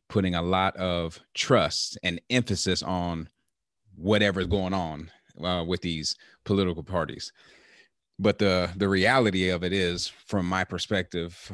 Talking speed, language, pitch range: 135 wpm, English, 85-95 Hz